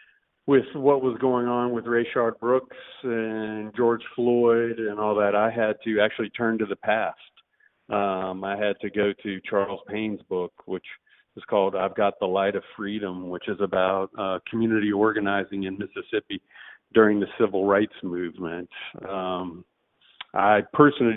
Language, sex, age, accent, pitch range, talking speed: English, male, 50-69, American, 105-120 Hz, 160 wpm